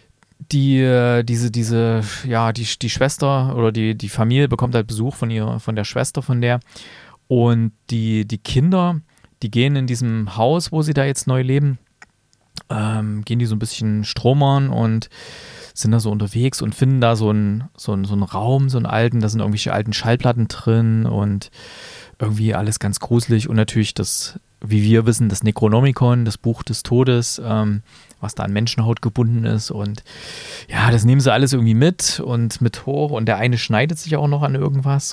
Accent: German